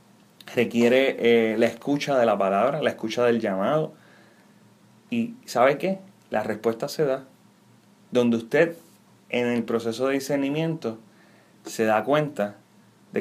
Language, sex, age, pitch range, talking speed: Spanish, male, 30-49, 115-140 Hz, 125 wpm